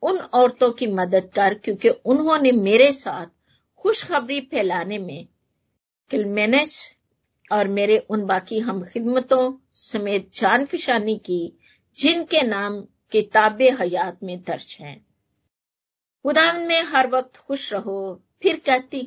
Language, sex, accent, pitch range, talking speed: Hindi, female, native, 195-275 Hz, 120 wpm